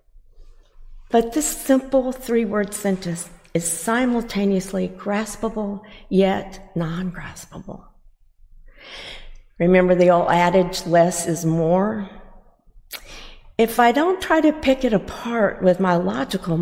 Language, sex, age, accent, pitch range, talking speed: English, female, 50-69, American, 170-220 Hz, 100 wpm